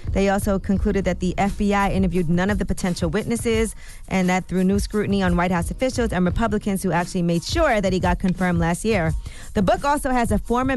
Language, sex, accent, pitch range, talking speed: English, female, American, 175-200 Hz, 215 wpm